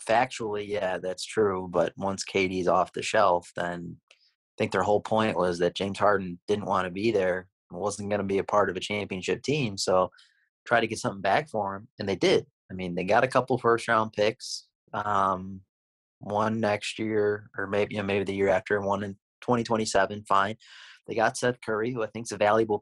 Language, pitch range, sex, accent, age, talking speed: English, 95-110 Hz, male, American, 30-49, 220 wpm